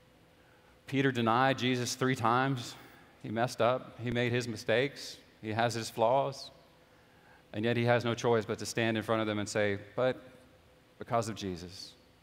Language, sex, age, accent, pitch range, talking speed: English, male, 40-59, American, 115-135 Hz, 170 wpm